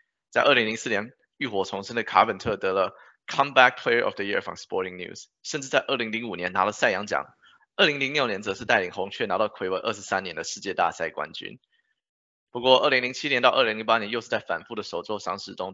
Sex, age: male, 20-39